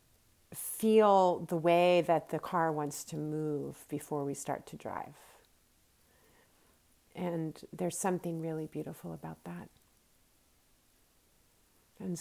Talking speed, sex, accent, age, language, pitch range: 110 wpm, female, American, 40-59, English, 145-180 Hz